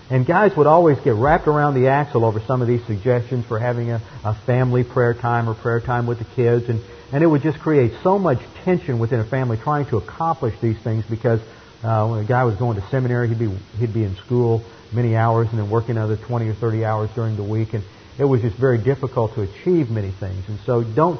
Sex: male